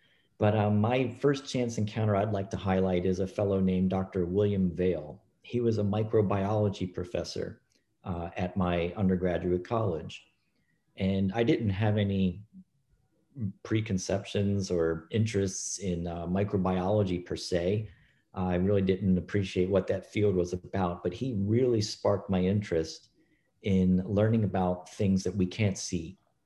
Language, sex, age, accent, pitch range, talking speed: English, male, 40-59, American, 90-110 Hz, 145 wpm